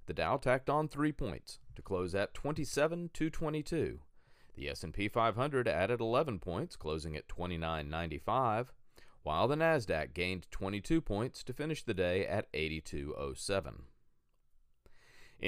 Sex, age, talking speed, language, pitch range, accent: male, 40-59, 120 wpm, English, 85-125 Hz, American